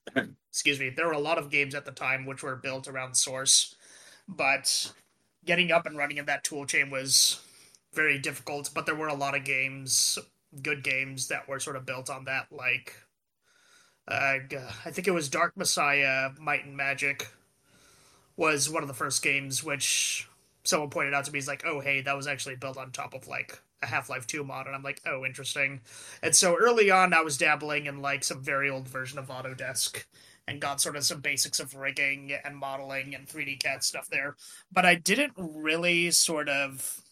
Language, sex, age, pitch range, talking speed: English, male, 20-39, 135-160 Hz, 200 wpm